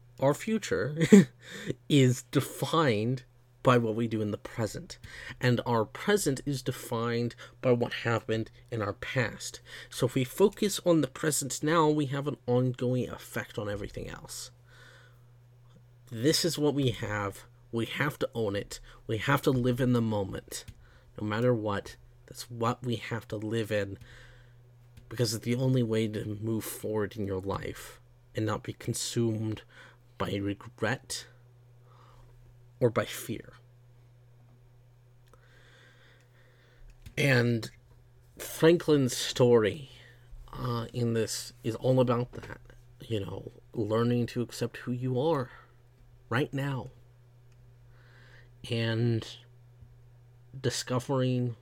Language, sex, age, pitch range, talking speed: English, male, 30-49, 120-125 Hz, 125 wpm